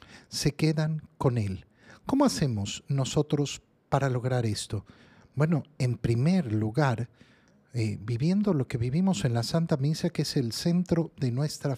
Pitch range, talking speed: 125-170 Hz, 150 wpm